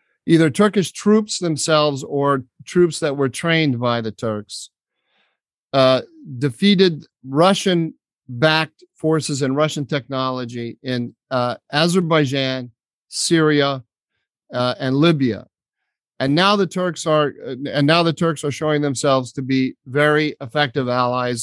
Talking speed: 120 wpm